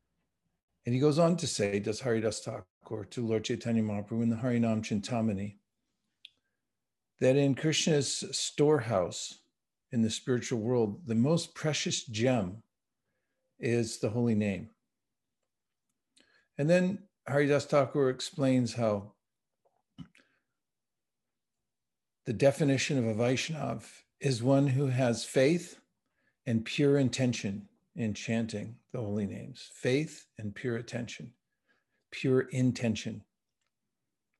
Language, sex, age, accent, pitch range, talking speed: English, male, 50-69, American, 115-140 Hz, 110 wpm